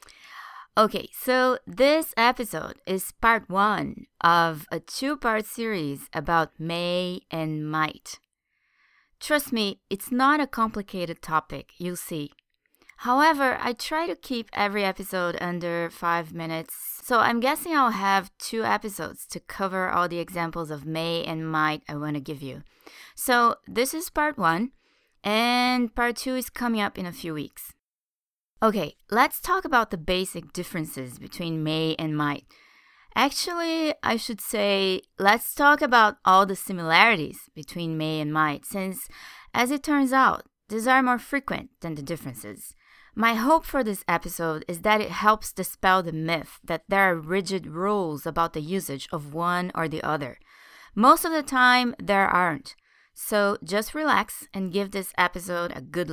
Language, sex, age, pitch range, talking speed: English, female, 20-39, 165-240 Hz, 155 wpm